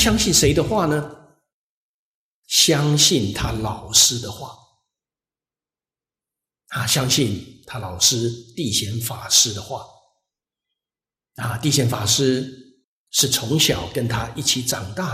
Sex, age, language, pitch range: male, 50-69, Chinese, 115-140 Hz